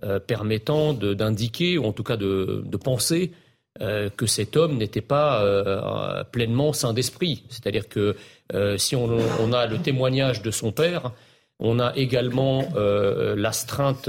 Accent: French